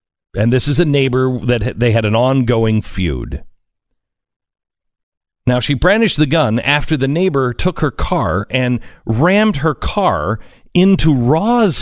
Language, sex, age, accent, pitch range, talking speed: English, male, 50-69, American, 115-180 Hz, 140 wpm